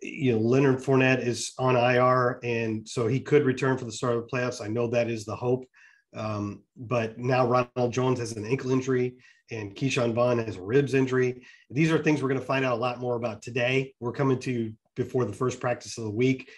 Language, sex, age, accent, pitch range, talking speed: English, male, 40-59, American, 120-140 Hz, 230 wpm